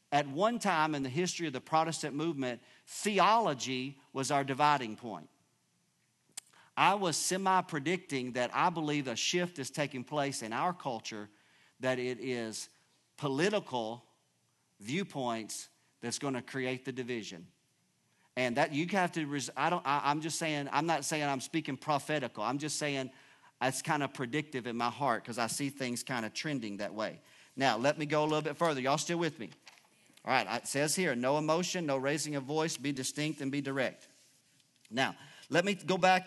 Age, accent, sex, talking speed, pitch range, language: 40-59, American, male, 175 wpm, 130-160 Hz, English